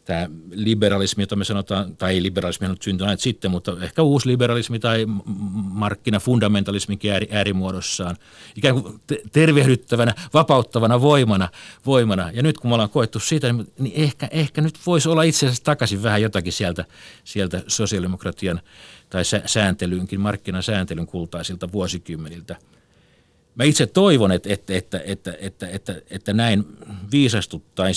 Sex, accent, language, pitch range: male, native, Finnish, 95-120 Hz